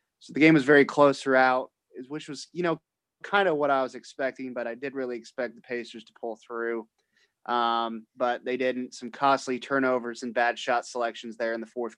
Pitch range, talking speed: 120-140 Hz, 205 wpm